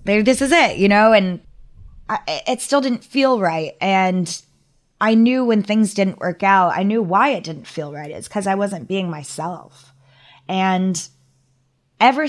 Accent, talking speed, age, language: American, 175 wpm, 20-39, English